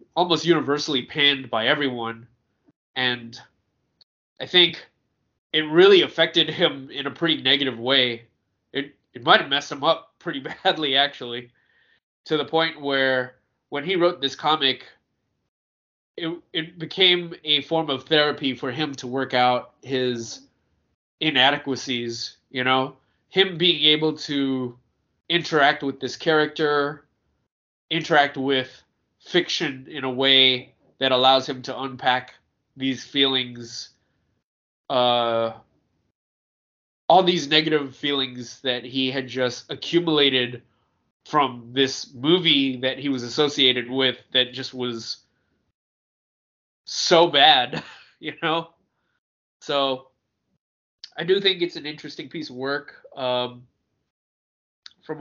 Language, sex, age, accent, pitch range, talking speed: English, male, 20-39, American, 125-150 Hz, 120 wpm